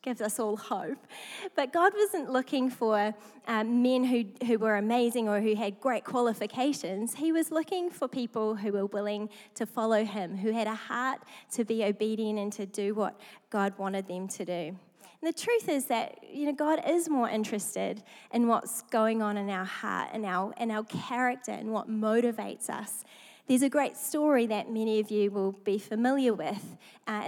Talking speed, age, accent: 185 wpm, 20-39, Australian